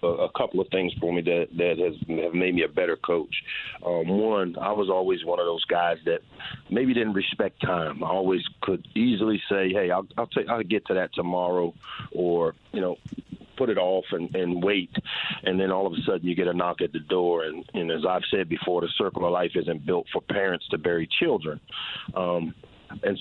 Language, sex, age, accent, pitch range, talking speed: English, male, 40-59, American, 85-95 Hz, 215 wpm